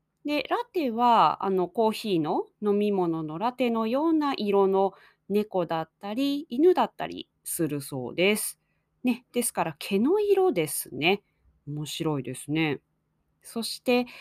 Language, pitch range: Japanese, 185-285 Hz